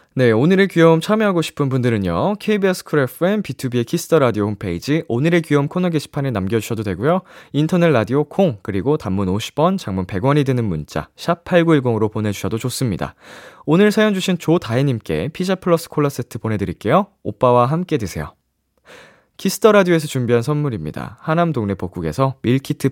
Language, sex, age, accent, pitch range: Korean, male, 20-39, native, 105-165 Hz